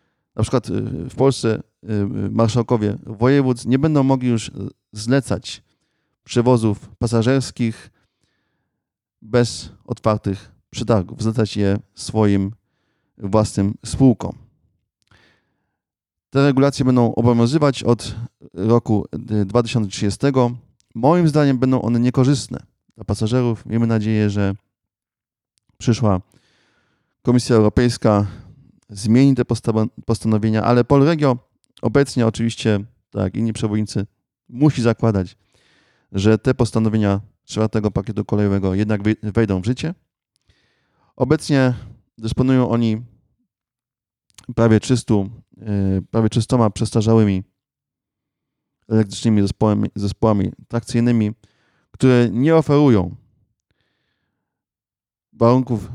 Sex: male